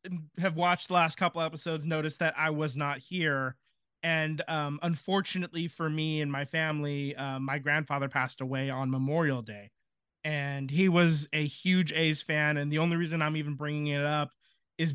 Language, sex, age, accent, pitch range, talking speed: English, male, 20-39, American, 145-175 Hz, 180 wpm